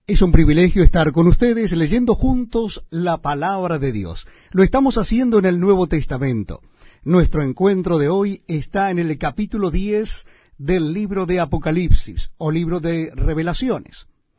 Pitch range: 160-215 Hz